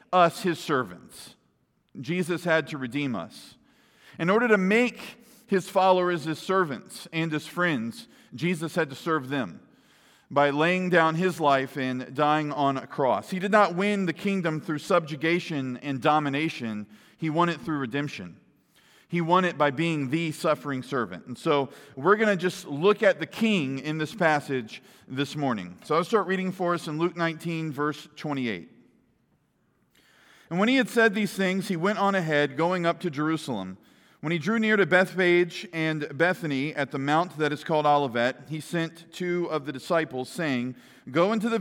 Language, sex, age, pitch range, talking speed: English, male, 40-59, 145-185 Hz, 175 wpm